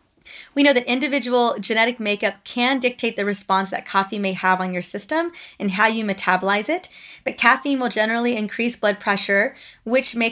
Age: 20-39